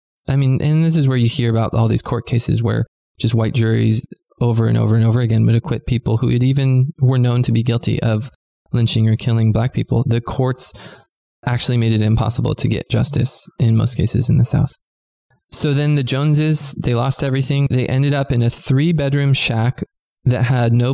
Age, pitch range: 20-39, 115-130 Hz